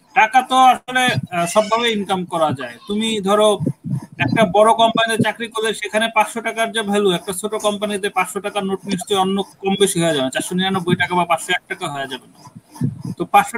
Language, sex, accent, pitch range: Bengali, male, native, 170-215 Hz